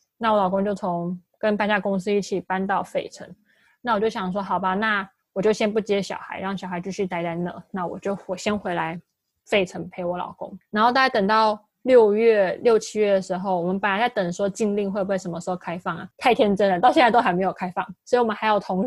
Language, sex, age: Chinese, female, 20-39